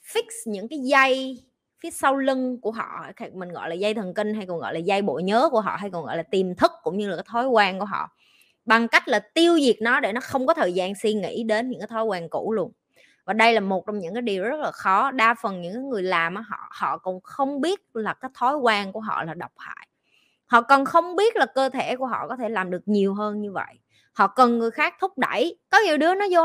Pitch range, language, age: 210-275 Hz, Vietnamese, 20-39